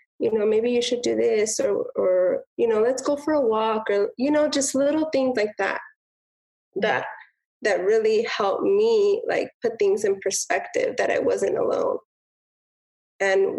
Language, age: English, 20-39